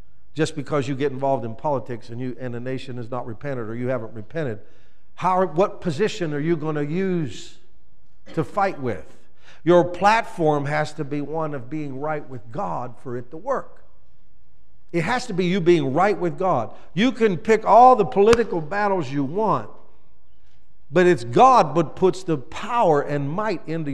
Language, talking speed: English, 185 wpm